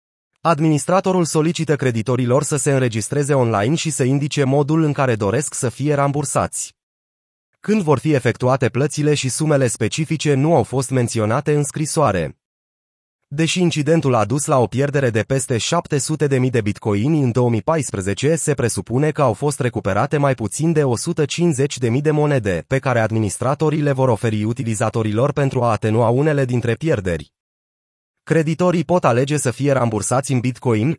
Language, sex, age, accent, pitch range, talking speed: Romanian, male, 30-49, native, 115-150 Hz, 150 wpm